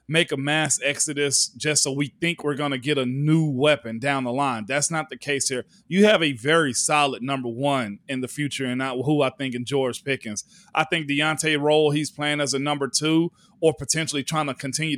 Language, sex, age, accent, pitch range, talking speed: English, male, 30-49, American, 145-180 Hz, 225 wpm